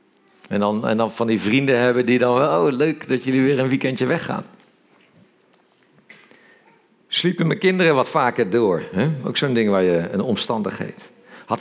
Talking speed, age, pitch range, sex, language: 160 wpm, 50-69, 110-145 Hz, male, Dutch